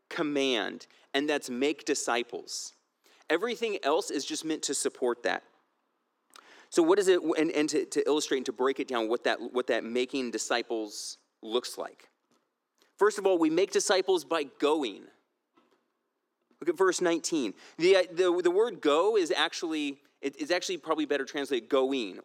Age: 30-49